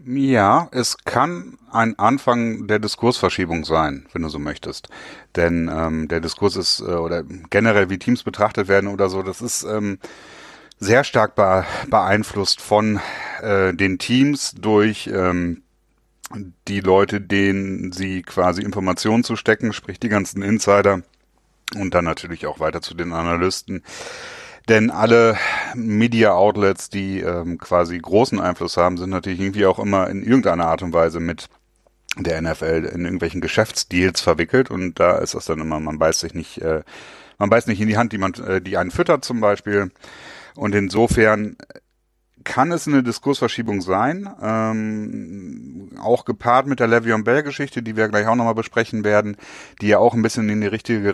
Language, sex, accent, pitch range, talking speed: German, male, German, 90-115 Hz, 160 wpm